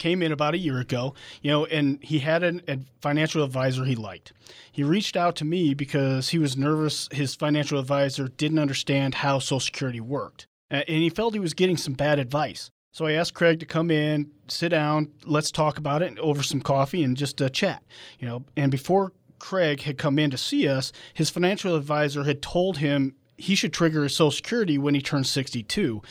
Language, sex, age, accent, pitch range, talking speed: English, male, 40-59, American, 140-165 Hz, 210 wpm